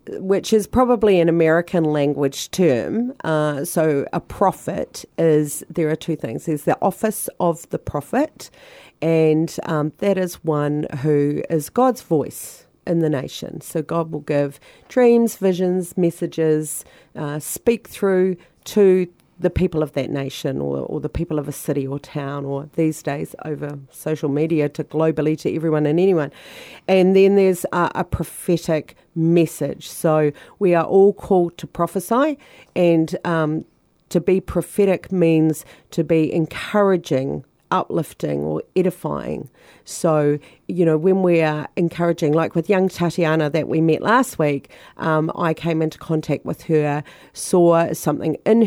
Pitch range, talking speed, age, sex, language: 150-180 Hz, 150 wpm, 40-59, female, Bulgarian